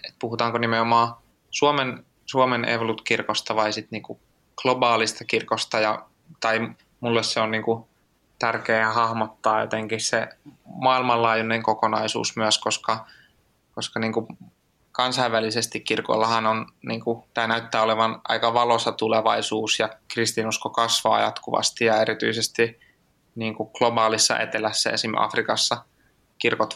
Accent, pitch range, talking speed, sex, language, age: native, 110-120 Hz, 105 wpm, male, Finnish, 20-39